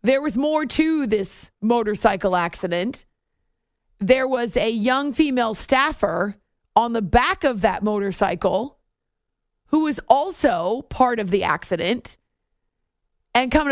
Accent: American